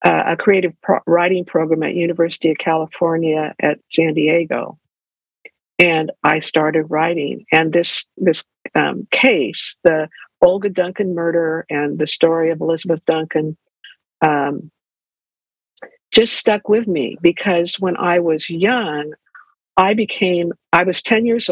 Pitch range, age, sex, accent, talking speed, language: 160-195 Hz, 60-79, female, American, 130 wpm, English